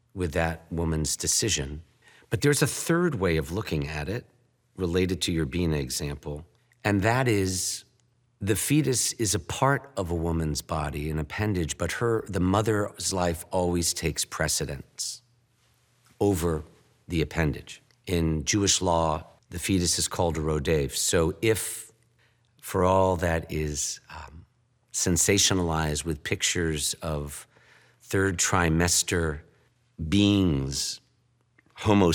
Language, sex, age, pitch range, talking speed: English, male, 50-69, 80-115 Hz, 125 wpm